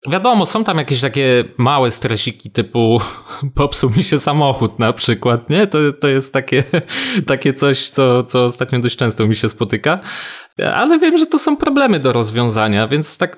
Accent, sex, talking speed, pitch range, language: native, male, 180 wpm, 110-140 Hz, Polish